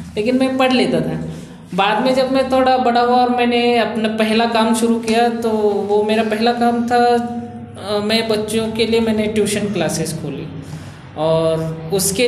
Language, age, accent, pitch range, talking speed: Hindi, 20-39, native, 180-215 Hz, 175 wpm